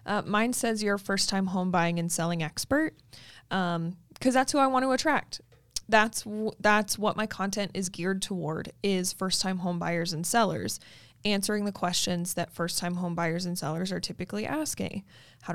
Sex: female